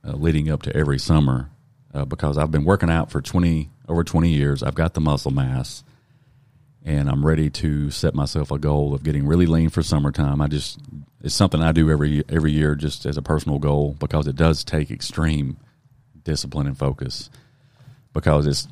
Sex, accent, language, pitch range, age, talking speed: male, American, English, 70-100 Hz, 40-59, 190 wpm